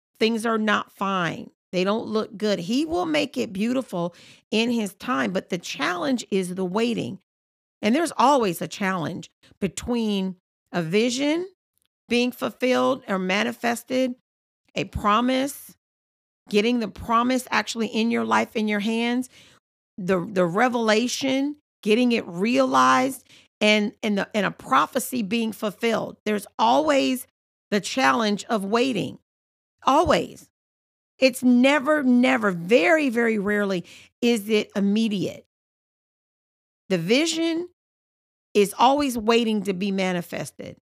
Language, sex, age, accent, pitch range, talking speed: English, female, 40-59, American, 200-255 Hz, 120 wpm